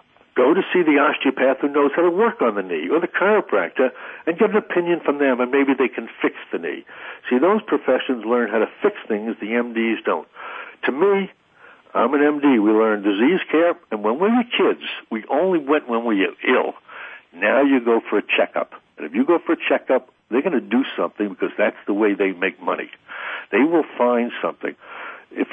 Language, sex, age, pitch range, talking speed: English, male, 60-79, 120-180 Hz, 215 wpm